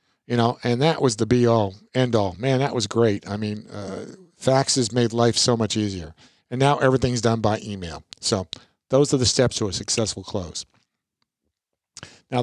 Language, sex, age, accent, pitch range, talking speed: English, male, 50-69, American, 110-135 Hz, 190 wpm